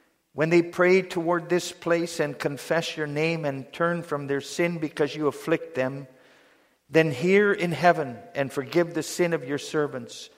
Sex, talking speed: male, 175 wpm